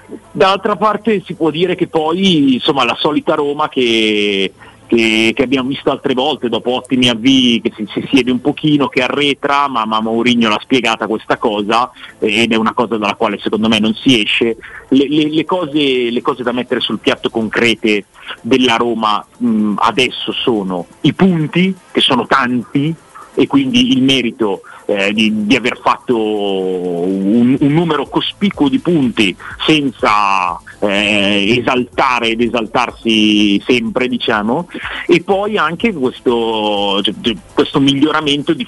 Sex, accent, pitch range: male, native, 110-140 Hz